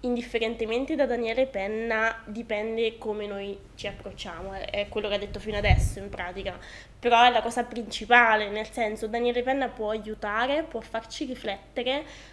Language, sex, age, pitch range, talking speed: Italian, female, 10-29, 210-250 Hz, 155 wpm